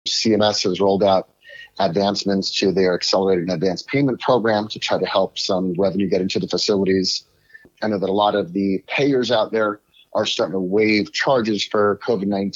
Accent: American